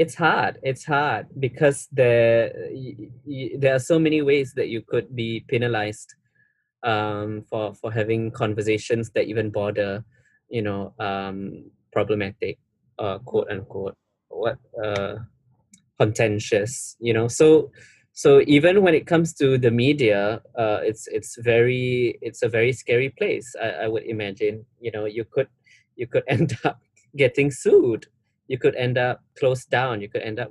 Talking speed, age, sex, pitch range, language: 155 wpm, 20-39, male, 110-140 Hz, English